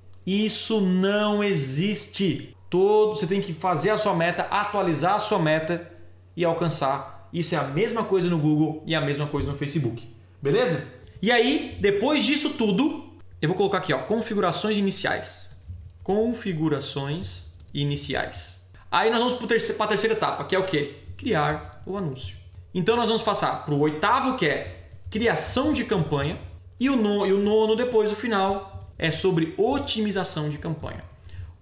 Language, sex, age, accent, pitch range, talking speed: Portuguese, male, 20-39, Brazilian, 135-210 Hz, 160 wpm